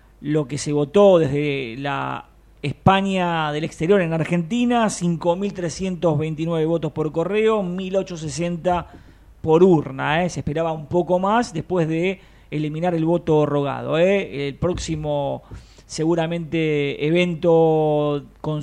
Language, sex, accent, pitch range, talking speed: Spanish, male, Argentinian, 155-205 Hz, 110 wpm